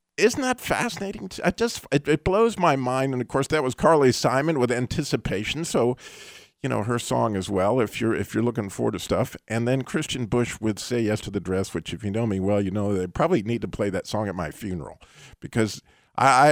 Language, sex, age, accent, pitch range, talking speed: English, male, 50-69, American, 105-140 Hz, 230 wpm